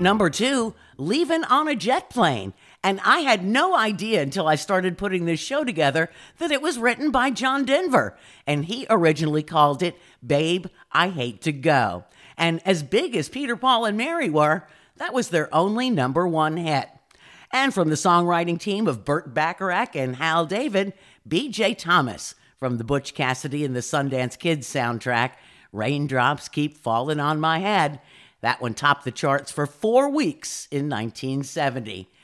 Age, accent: 50-69, American